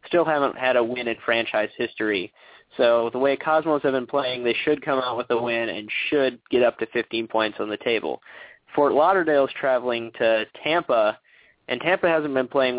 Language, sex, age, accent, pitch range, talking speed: English, male, 20-39, American, 115-140 Hz, 200 wpm